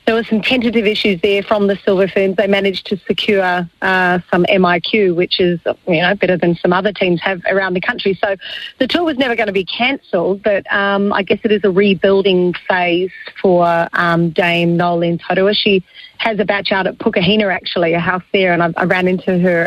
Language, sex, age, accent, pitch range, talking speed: English, female, 40-59, Australian, 185-220 Hz, 215 wpm